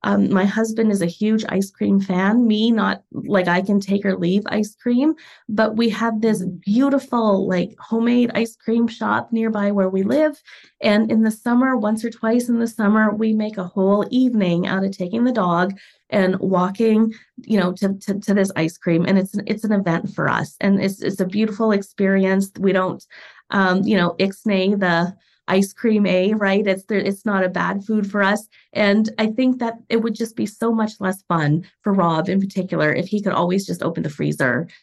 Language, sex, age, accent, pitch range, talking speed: English, female, 20-39, American, 180-220 Hz, 205 wpm